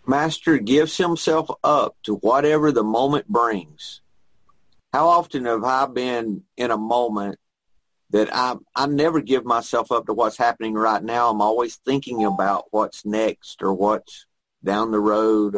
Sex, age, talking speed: male, 50-69, 155 wpm